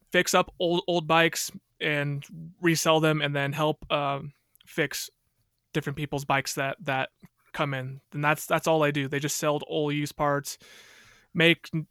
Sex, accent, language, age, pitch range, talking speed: male, American, English, 20-39, 140-155 Hz, 170 wpm